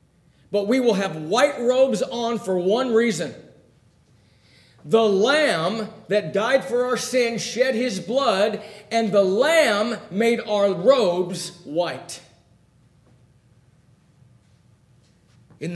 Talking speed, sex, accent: 105 wpm, male, American